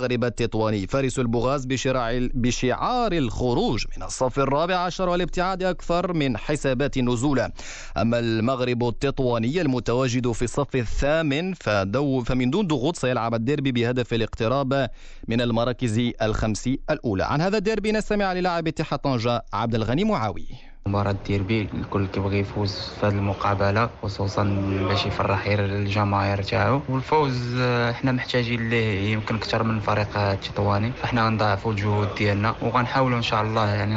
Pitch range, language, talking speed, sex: 105-135 Hz, Arabic, 135 wpm, male